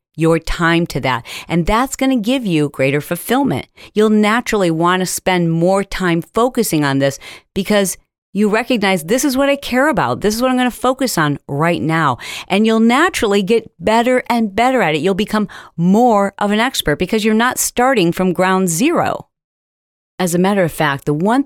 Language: English